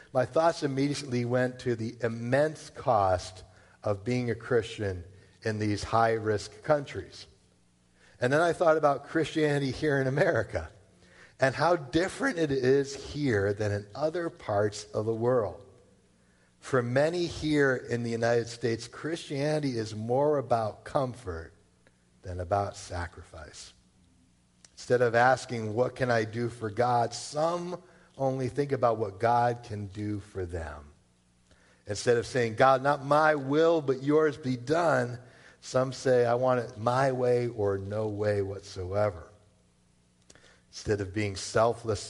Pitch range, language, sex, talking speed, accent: 95-130 Hz, English, male, 140 wpm, American